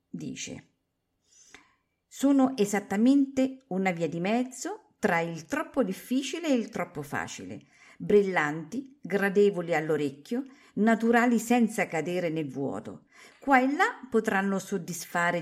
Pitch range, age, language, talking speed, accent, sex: 160-235 Hz, 50-69, Italian, 110 wpm, native, female